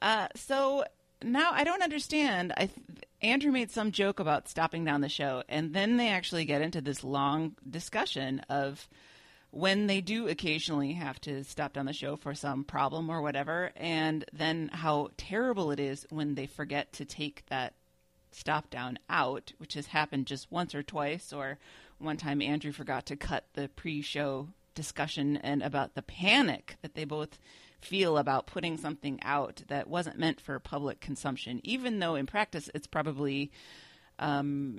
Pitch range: 140-180 Hz